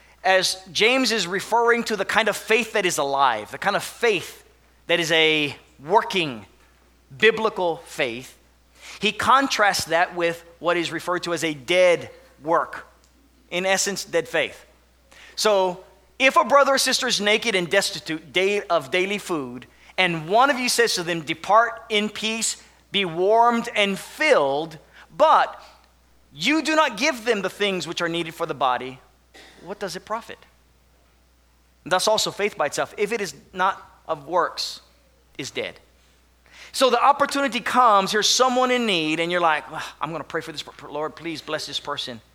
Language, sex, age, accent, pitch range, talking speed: English, male, 30-49, American, 140-210 Hz, 165 wpm